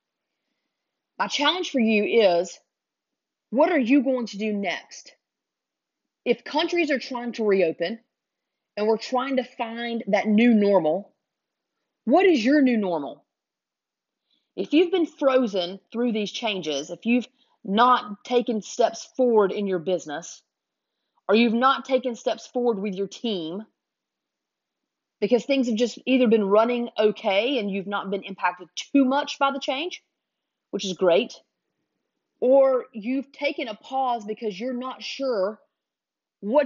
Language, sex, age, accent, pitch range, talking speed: English, female, 30-49, American, 205-275 Hz, 140 wpm